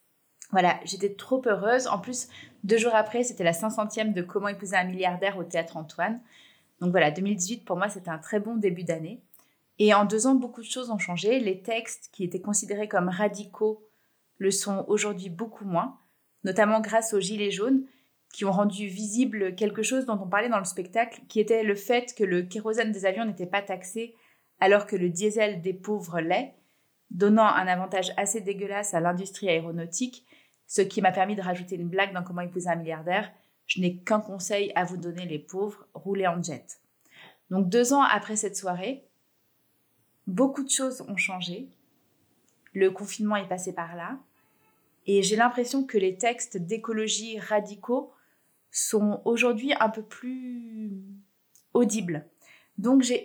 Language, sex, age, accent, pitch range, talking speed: French, female, 30-49, French, 190-230 Hz, 175 wpm